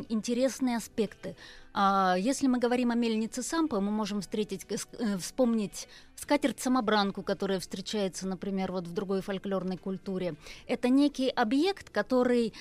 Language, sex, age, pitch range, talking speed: Russian, female, 20-39, 205-255 Hz, 120 wpm